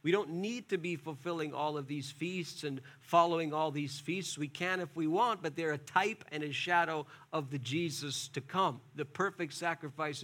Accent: American